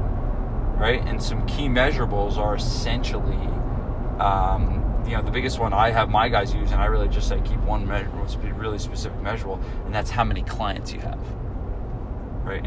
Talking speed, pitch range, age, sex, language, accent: 185 wpm, 105-120 Hz, 20-39, male, English, American